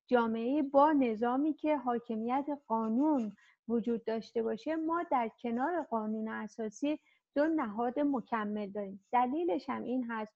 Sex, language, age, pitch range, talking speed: female, Persian, 50-69, 225-270 Hz, 125 wpm